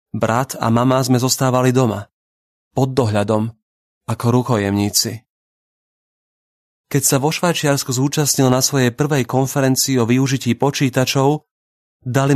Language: Slovak